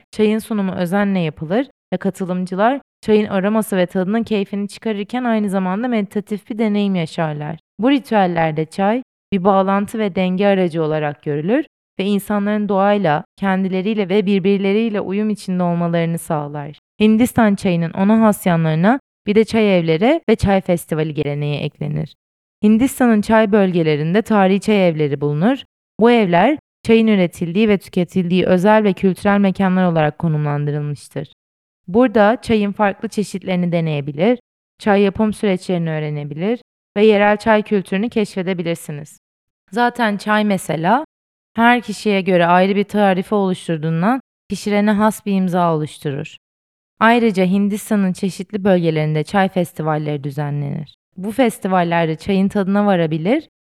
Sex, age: female, 30-49